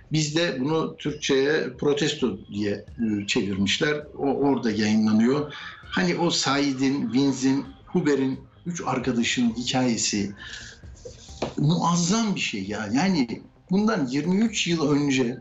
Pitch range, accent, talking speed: 125-175 Hz, native, 105 wpm